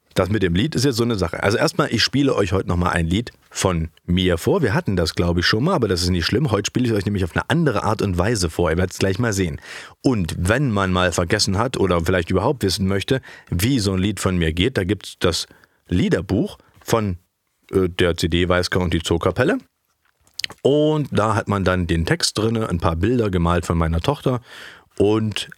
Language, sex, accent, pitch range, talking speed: German, male, German, 90-115 Hz, 230 wpm